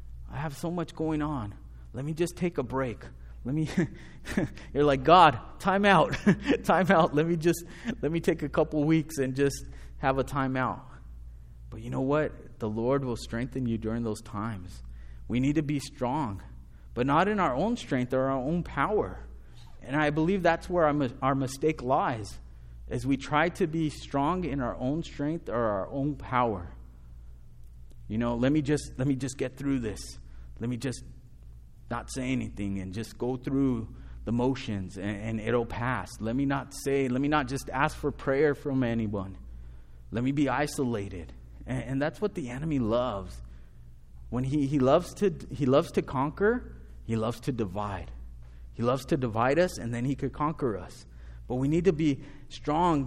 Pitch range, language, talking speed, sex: 100-150 Hz, English, 190 wpm, male